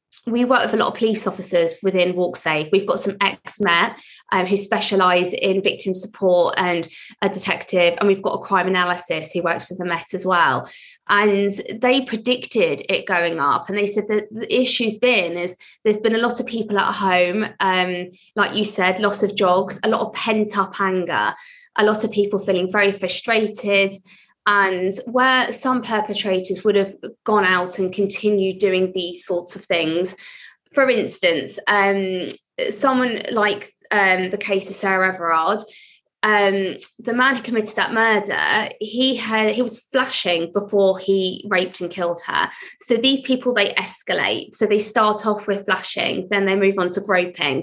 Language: English